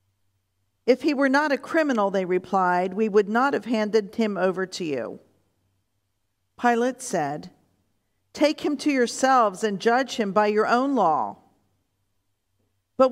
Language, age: English, 50-69